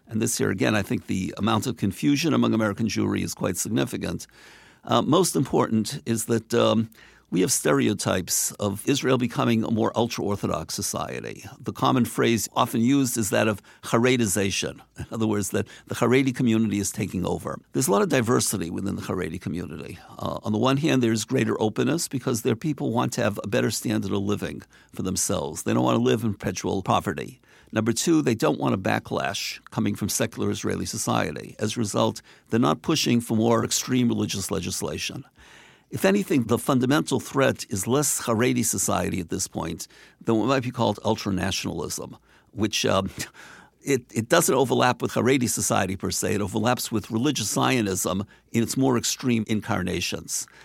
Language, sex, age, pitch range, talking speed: English, male, 50-69, 100-120 Hz, 180 wpm